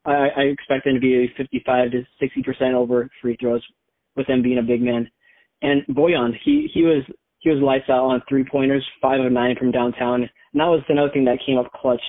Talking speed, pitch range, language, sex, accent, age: 225 wpm, 125-140 Hz, English, male, American, 20-39